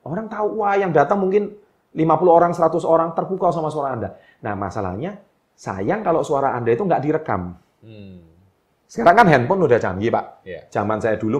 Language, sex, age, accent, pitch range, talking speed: Indonesian, male, 30-49, native, 110-180 Hz, 170 wpm